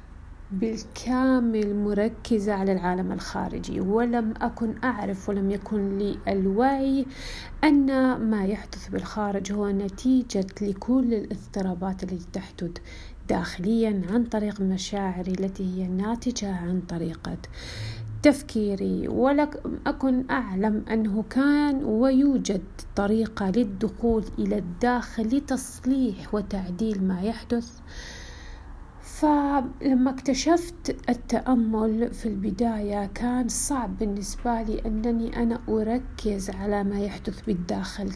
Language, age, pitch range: Arabic, 40-59, 200-245 Hz